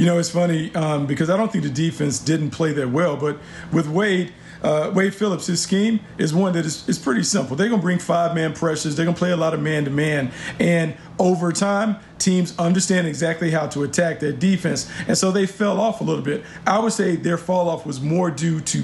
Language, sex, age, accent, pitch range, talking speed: English, male, 40-59, American, 150-180 Hz, 225 wpm